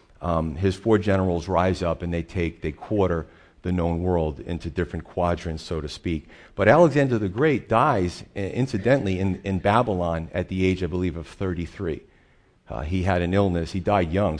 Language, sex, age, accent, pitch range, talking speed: English, male, 40-59, American, 85-100 Hz, 190 wpm